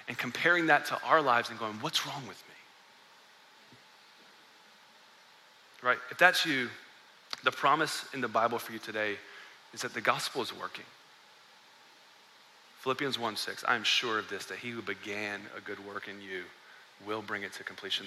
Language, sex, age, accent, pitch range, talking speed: English, male, 30-49, American, 115-145 Hz, 175 wpm